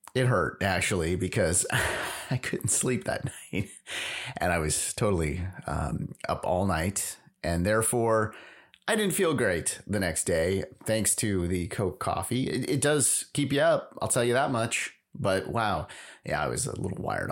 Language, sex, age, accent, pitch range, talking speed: English, male, 30-49, American, 100-150 Hz, 175 wpm